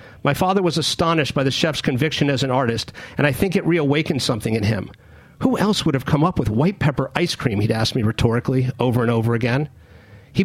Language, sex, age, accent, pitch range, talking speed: English, male, 50-69, American, 125-165 Hz, 225 wpm